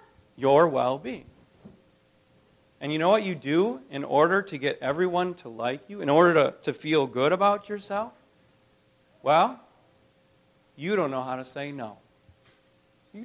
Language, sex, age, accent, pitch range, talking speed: English, male, 40-59, American, 130-200 Hz, 150 wpm